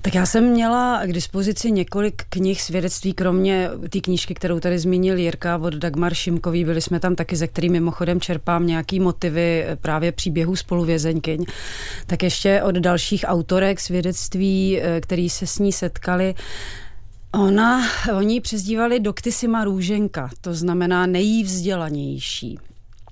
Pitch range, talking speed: 175-195 Hz, 130 wpm